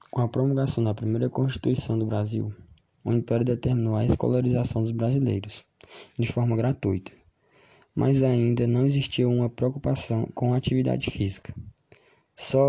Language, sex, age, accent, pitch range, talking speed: Portuguese, male, 20-39, Brazilian, 110-130 Hz, 135 wpm